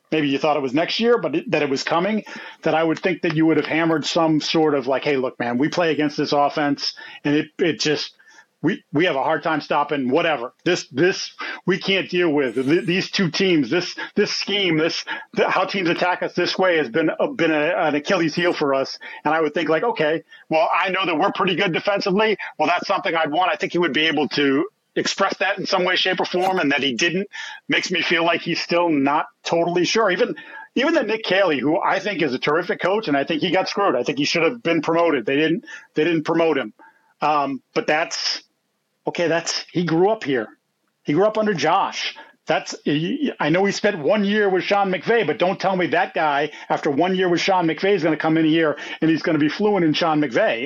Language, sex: English, male